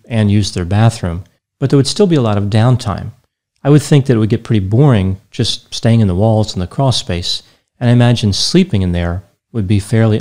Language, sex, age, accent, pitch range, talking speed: English, male, 40-59, American, 95-115 Hz, 235 wpm